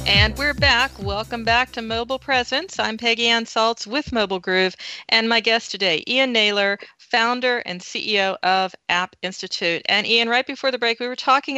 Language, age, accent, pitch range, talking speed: English, 40-59, American, 190-240 Hz, 185 wpm